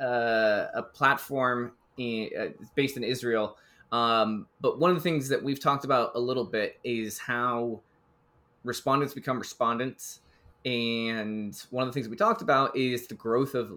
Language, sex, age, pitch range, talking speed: English, male, 20-39, 110-135 Hz, 165 wpm